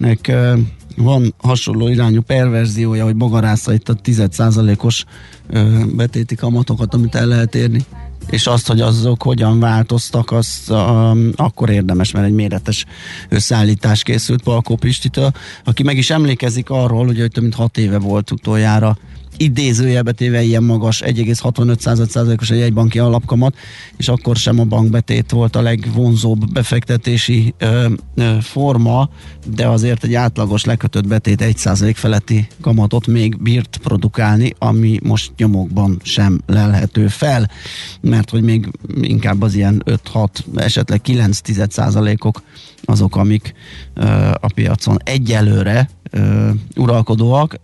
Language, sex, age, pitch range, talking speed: Hungarian, male, 30-49, 105-120 Hz, 125 wpm